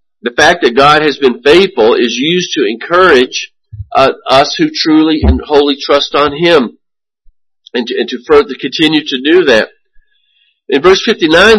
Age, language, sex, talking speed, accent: 50-69, English, male, 165 wpm, American